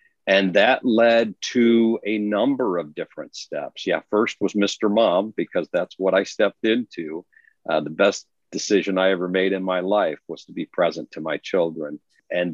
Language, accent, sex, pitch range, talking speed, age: English, American, male, 90-110 Hz, 180 wpm, 50-69